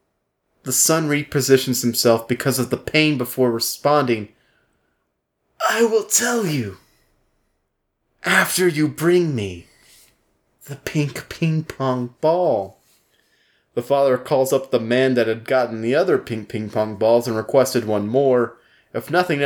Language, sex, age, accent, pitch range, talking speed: English, male, 30-49, American, 110-155 Hz, 135 wpm